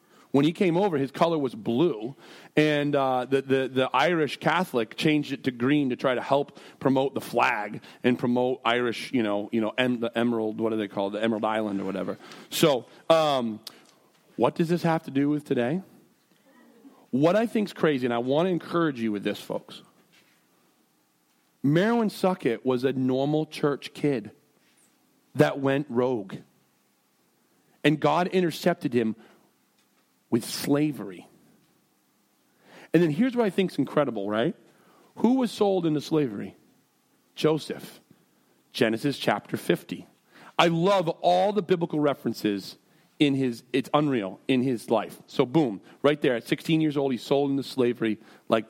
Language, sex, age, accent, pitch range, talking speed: English, male, 40-59, American, 120-170 Hz, 160 wpm